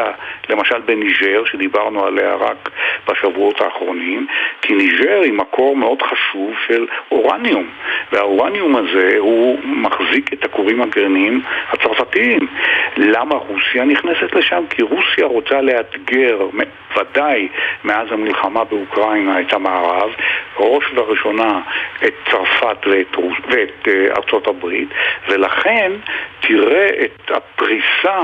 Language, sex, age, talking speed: Hebrew, male, 60-79, 100 wpm